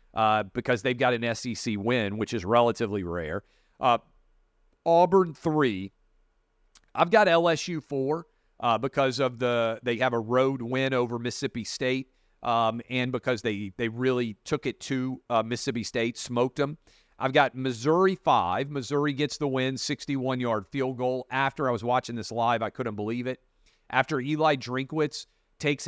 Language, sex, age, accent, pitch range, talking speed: English, male, 40-59, American, 115-140 Hz, 160 wpm